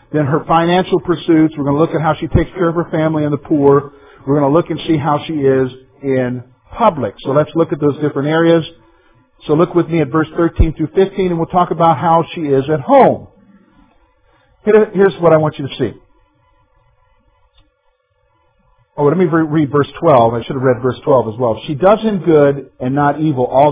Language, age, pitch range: English, 50-69, 140-190 Hz